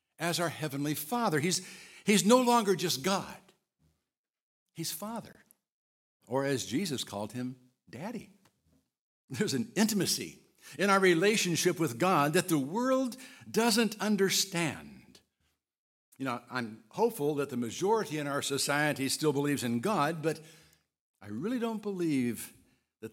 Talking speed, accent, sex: 130 wpm, American, male